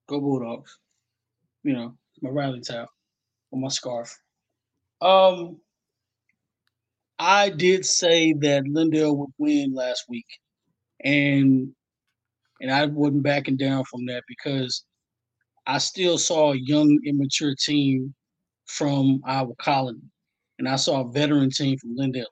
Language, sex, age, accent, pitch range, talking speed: English, male, 20-39, American, 130-160 Hz, 125 wpm